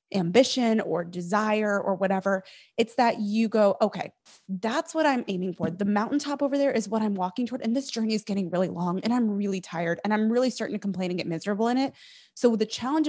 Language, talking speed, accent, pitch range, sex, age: English, 225 wpm, American, 185-245 Hz, female, 20-39